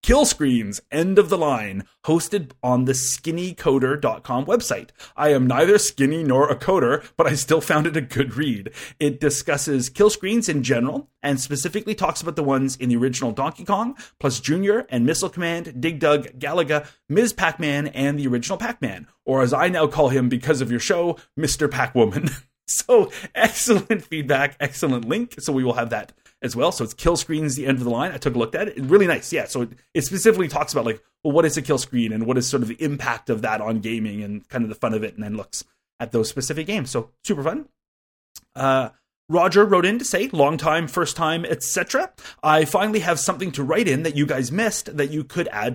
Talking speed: 220 wpm